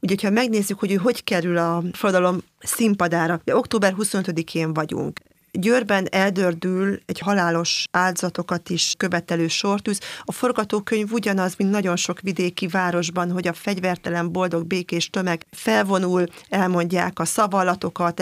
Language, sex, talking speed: Hungarian, female, 130 wpm